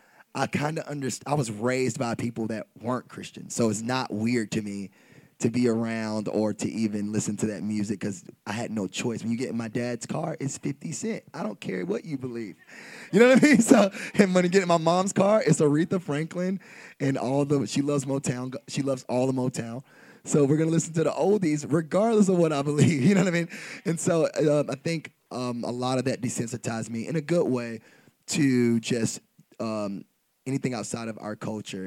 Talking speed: 220 wpm